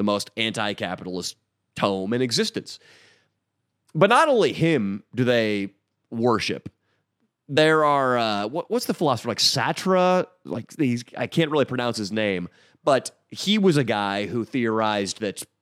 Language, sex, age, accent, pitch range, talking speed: English, male, 30-49, American, 110-155 Hz, 135 wpm